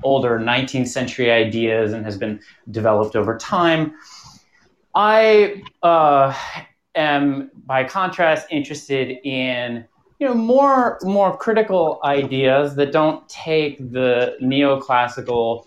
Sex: male